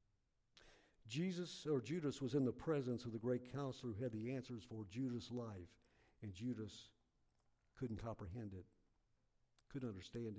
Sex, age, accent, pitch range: male, 50-69, American, 110-140 Hz